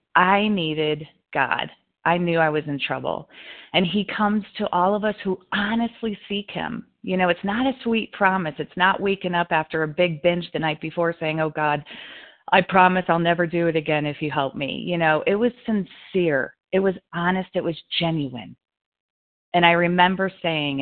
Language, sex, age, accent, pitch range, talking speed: English, female, 40-59, American, 155-195 Hz, 195 wpm